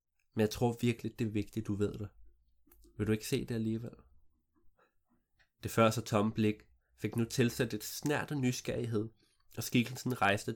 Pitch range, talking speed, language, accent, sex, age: 105-130 Hz, 170 wpm, Danish, native, male, 20-39